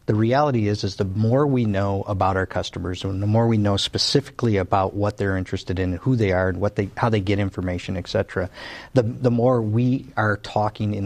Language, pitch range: English, 105-145 Hz